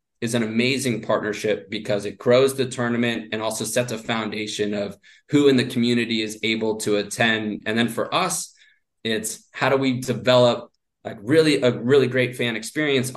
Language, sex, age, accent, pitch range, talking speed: English, male, 20-39, American, 110-125 Hz, 180 wpm